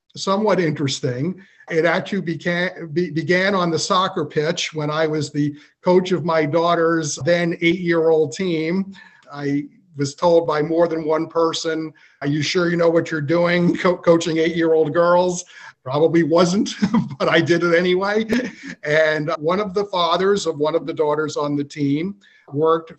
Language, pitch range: English, 150-180 Hz